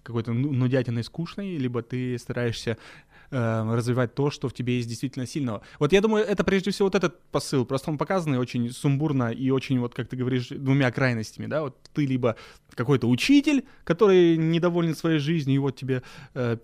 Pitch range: 120-155 Hz